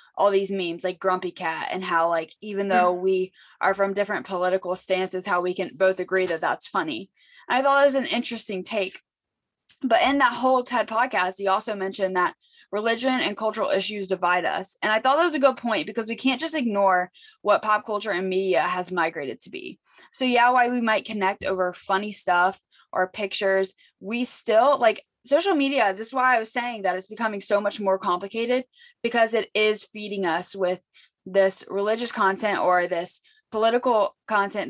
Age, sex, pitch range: 10-29, female, 185-225 Hz